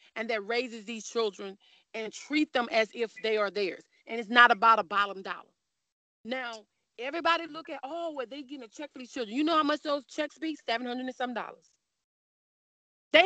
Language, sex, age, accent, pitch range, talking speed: English, female, 30-49, American, 210-255 Hz, 205 wpm